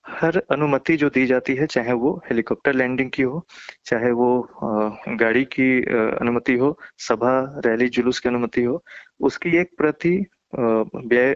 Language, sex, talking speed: Hindi, male, 150 wpm